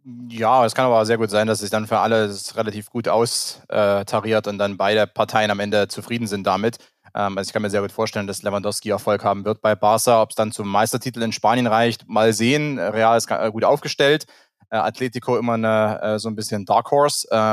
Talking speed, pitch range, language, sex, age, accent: 200 wpm, 110-135 Hz, German, male, 20-39, German